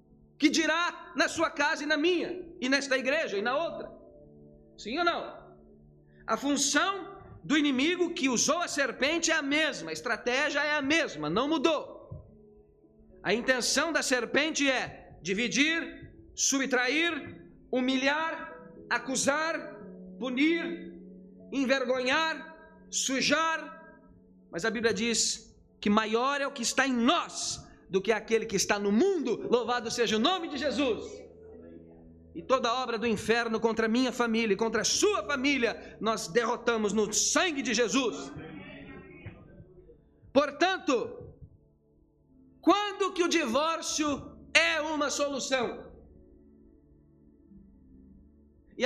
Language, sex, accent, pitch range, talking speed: Portuguese, male, Brazilian, 220-310 Hz, 125 wpm